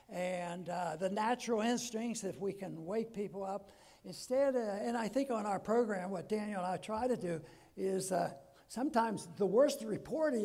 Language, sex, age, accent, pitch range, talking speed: English, male, 60-79, American, 190-260 Hz, 185 wpm